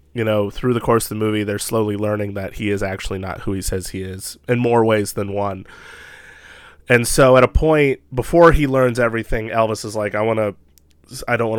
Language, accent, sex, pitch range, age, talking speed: English, American, male, 100-120 Hz, 20-39, 230 wpm